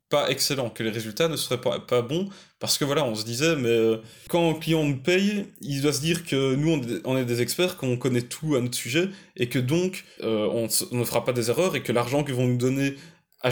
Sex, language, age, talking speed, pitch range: male, French, 20-39, 260 wpm, 125-165 Hz